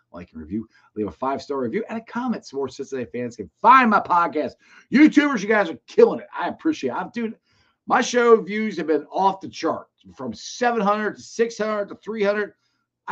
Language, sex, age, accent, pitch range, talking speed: English, male, 40-59, American, 110-180 Hz, 200 wpm